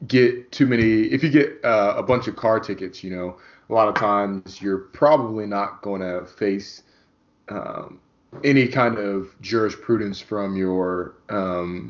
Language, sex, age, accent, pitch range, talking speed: English, male, 20-39, American, 95-120 Hz, 160 wpm